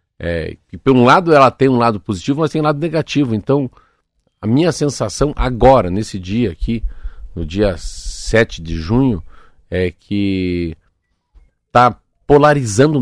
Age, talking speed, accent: 50-69, 145 wpm, Brazilian